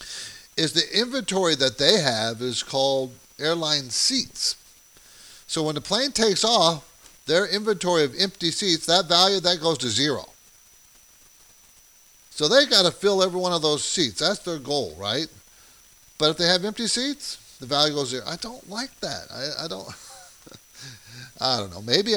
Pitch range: 105-170 Hz